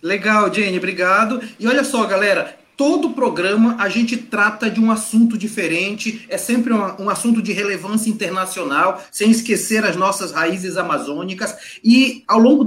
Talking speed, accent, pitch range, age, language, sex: 150 wpm, Brazilian, 200-245 Hz, 30-49, Portuguese, male